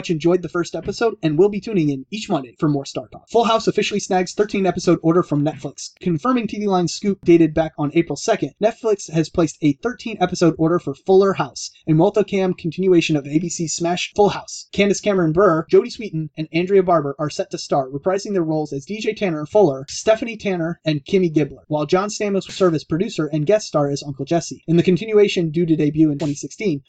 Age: 30-49